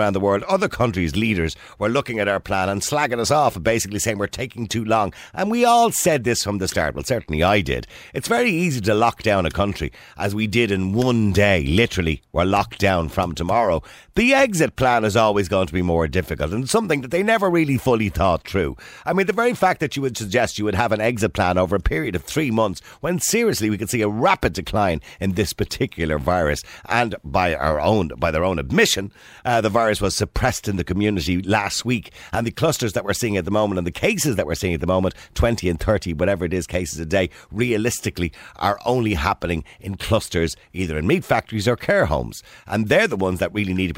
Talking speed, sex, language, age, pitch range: 235 wpm, male, English, 50-69, 90-120 Hz